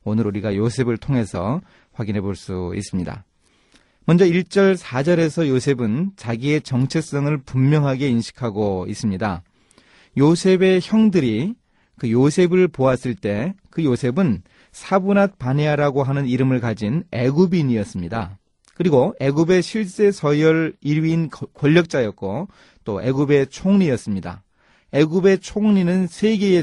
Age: 30-49